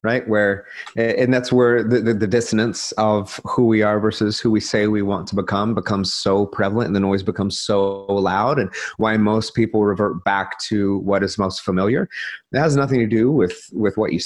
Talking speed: 210 wpm